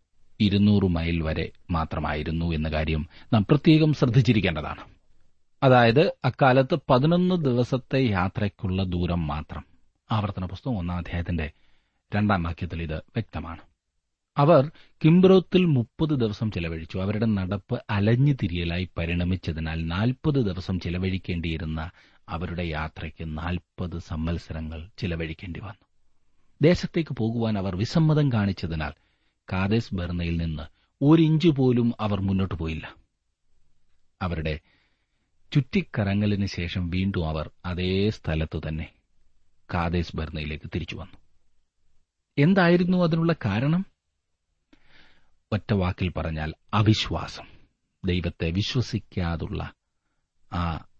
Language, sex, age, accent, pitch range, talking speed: Malayalam, male, 30-49, native, 80-110 Hz, 85 wpm